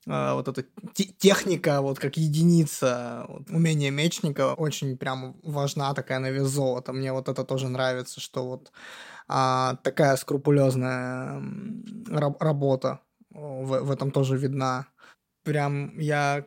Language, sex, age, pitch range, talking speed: Russian, male, 20-39, 135-170 Hz, 135 wpm